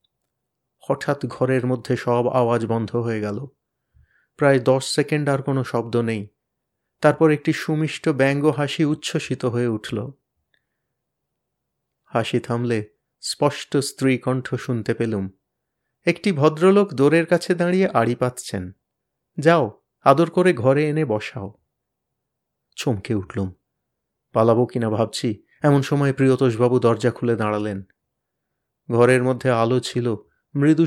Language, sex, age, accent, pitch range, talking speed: Bengali, male, 30-49, native, 120-140 Hz, 115 wpm